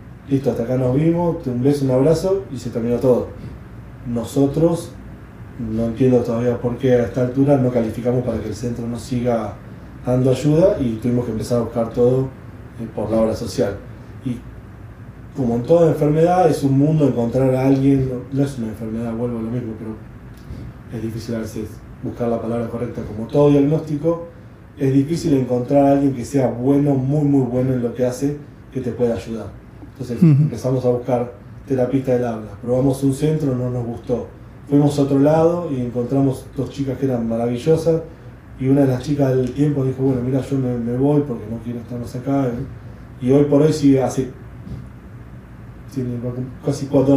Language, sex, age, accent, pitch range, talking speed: Spanish, male, 20-39, Argentinian, 115-135 Hz, 185 wpm